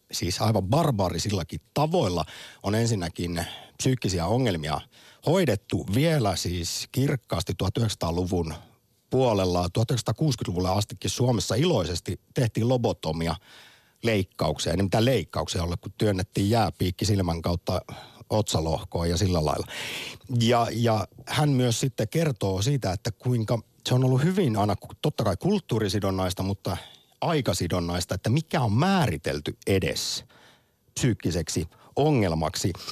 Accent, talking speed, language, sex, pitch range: native, 110 wpm, Finnish, male, 95-135 Hz